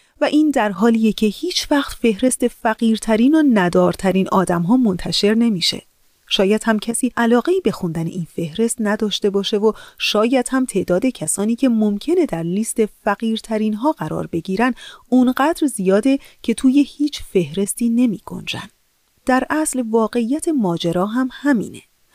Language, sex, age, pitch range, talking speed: Persian, female, 30-49, 185-255 Hz, 145 wpm